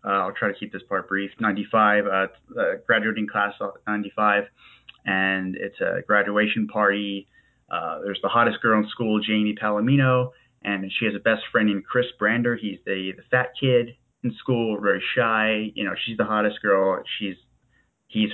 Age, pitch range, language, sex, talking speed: 20-39, 100-120 Hz, English, male, 180 wpm